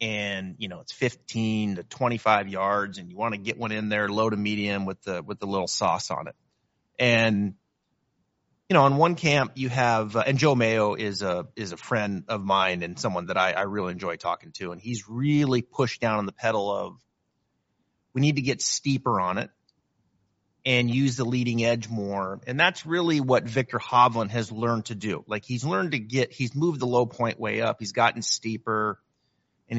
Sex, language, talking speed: male, English, 210 wpm